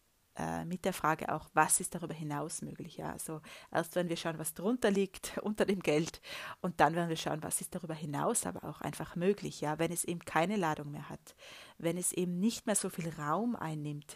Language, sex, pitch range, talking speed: German, female, 160-195 Hz, 215 wpm